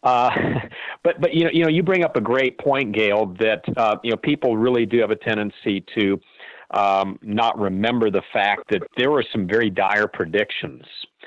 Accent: American